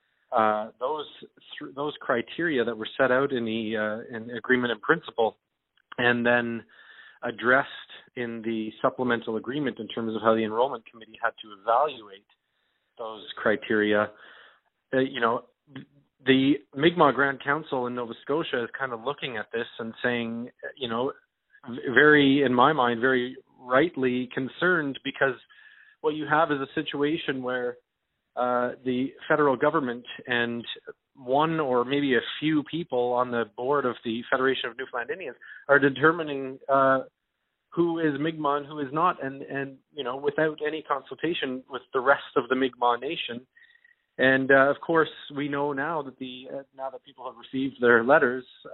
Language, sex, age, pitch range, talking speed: English, male, 40-59, 120-145 Hz, 160 wpm